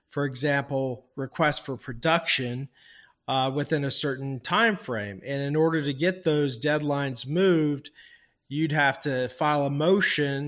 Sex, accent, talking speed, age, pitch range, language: male, American, 145 wpm, 40-59, 130-155 Hz, English